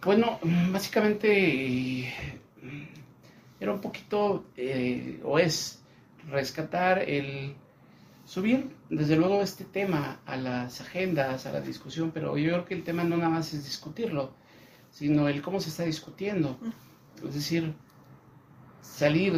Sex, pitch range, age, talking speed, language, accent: male, 140-180 Hz, 50-69, 125 wpm, Spanish, Mexican